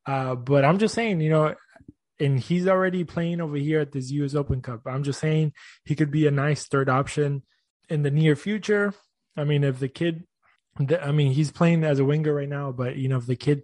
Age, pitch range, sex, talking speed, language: 20-39, 130-155 Hz, male, 230 wpm, English